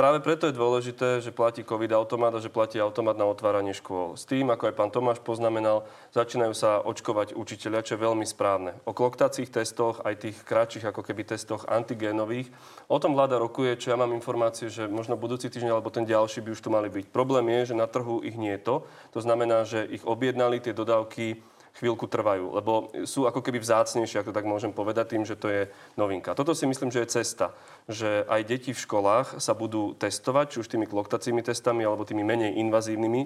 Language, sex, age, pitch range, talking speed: Slovak, male, 30-49, 110-130 Hz, 210 wpm